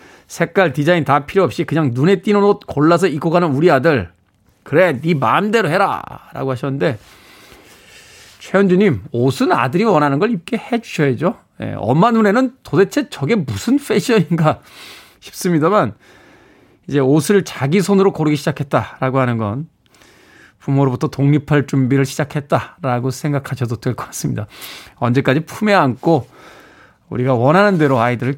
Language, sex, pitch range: Korean, male, 130-185 Hz